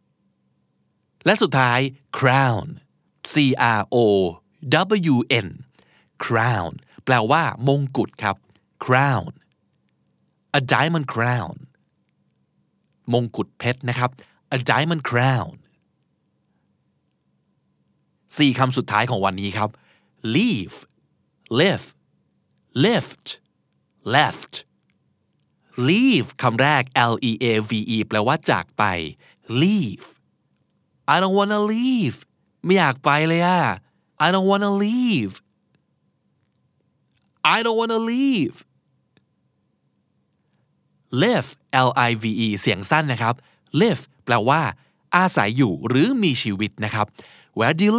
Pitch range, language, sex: 105-165 Hz, Thai, male